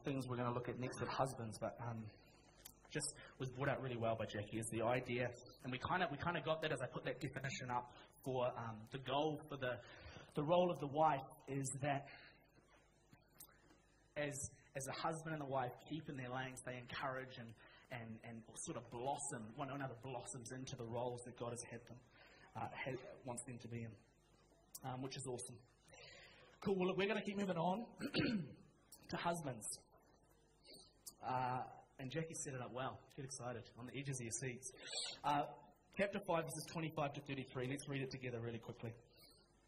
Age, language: 20-39, English